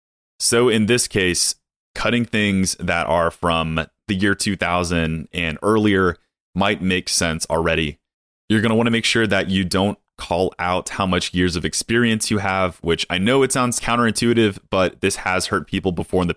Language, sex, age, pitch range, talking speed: English, male, 30-49, 85-100 Hz, 185 wpm